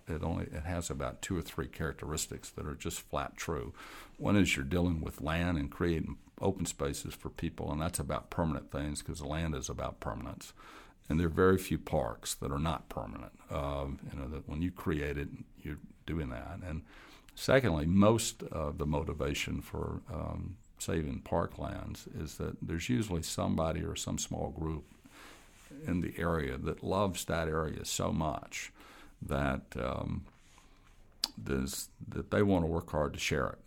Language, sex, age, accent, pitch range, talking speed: English, male, 60-79, American, 70-90 Hz, 170 wpm